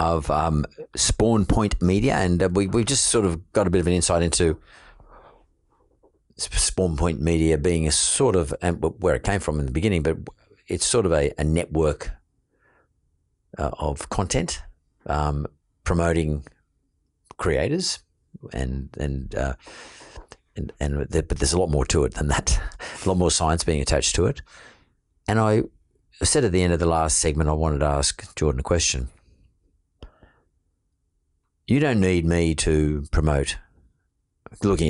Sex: male